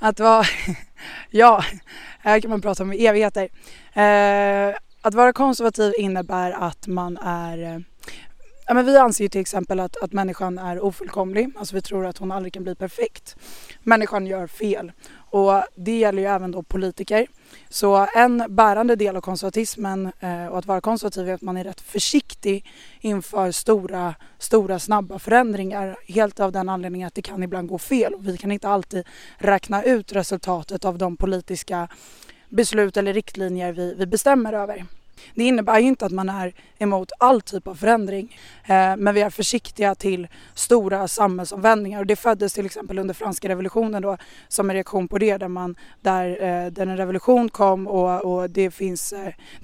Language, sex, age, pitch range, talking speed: Swedish, female, 20-39, 185-215 Hz, 170 wpm